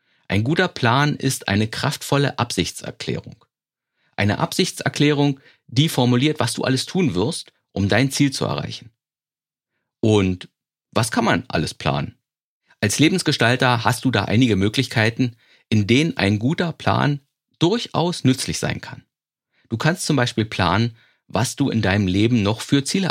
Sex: male